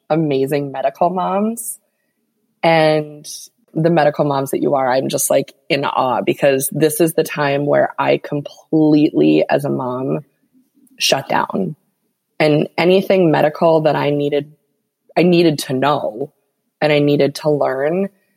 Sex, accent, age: female, American, 20-39